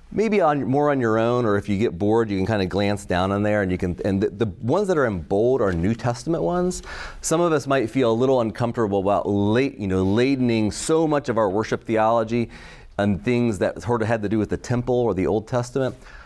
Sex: male